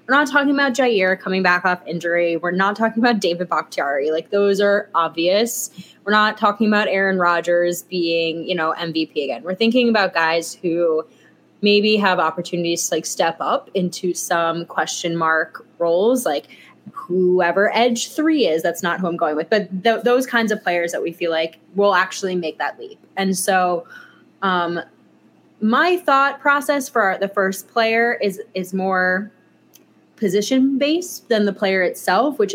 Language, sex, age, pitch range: English, female, 20-39, 170-210 Hz